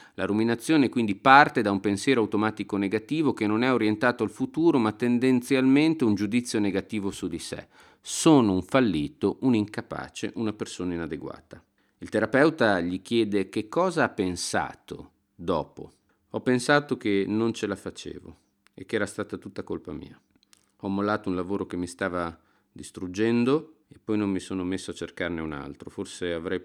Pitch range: 95-115 Hz